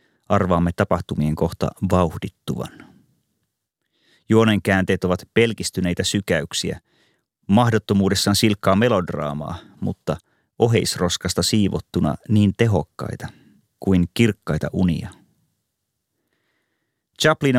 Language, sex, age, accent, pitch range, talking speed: Finnish, male, 30-49, native, 90-105 Hz, 70 wpm